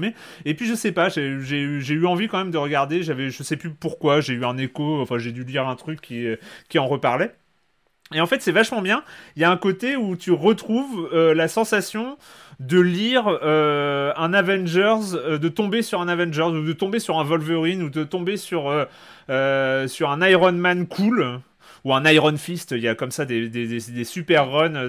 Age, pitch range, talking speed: 30-49, 135-180 Hz, 220 wpm